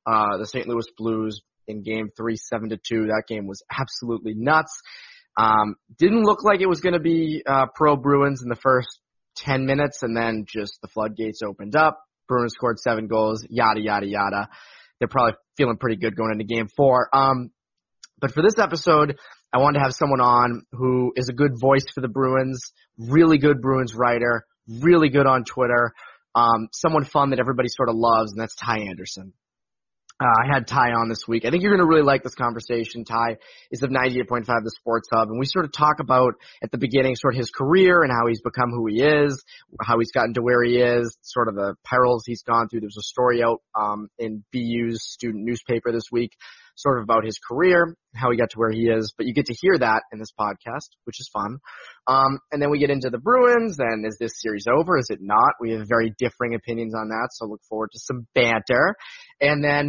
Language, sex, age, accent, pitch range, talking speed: English, male, 20-39, American, 115-135 Hz, 220 wpm